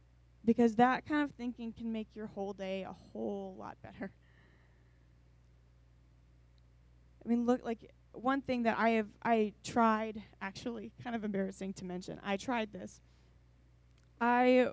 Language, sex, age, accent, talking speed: English, female, 20-39, American, 145 wpm